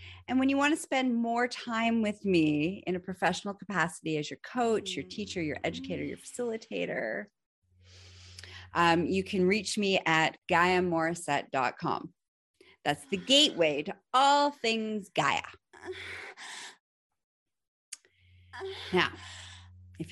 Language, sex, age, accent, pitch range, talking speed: English, female, 30-49, American, 150-225 Hz, 115 wpm